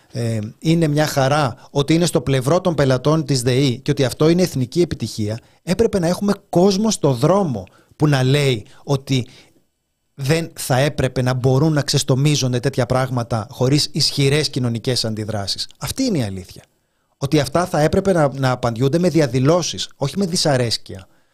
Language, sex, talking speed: Greek, male, 160 wpm